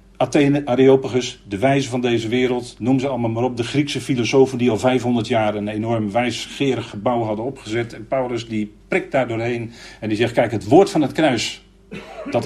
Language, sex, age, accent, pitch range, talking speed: Dutch, male, 50-69, Dutch, 110-150 Hz, 195 wpm